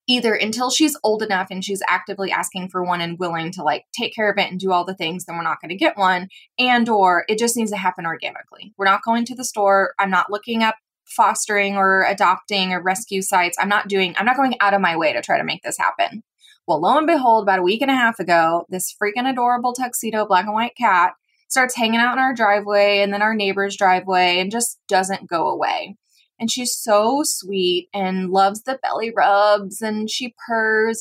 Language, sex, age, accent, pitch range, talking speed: English, female, 20-39, American, 185-230 Hz, 230 wpm